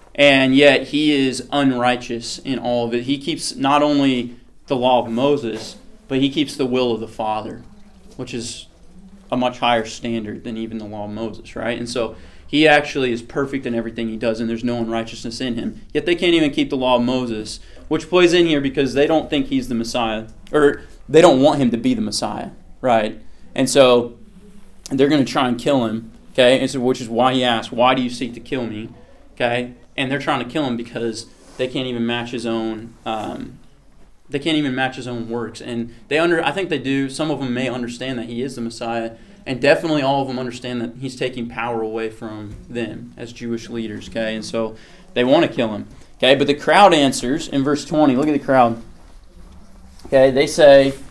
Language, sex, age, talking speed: English, male, 30-49, 215 wpm